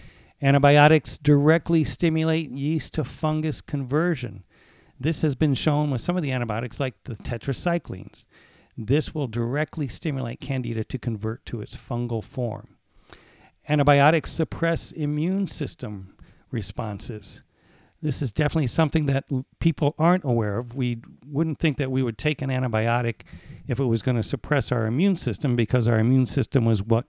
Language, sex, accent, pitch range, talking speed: English, male, American, 120-150 Hz, 150 wpm